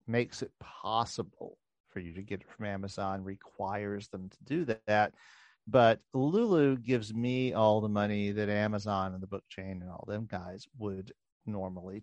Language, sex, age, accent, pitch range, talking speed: English, male, 40-59, American, 100-115 Hz, 170 wpm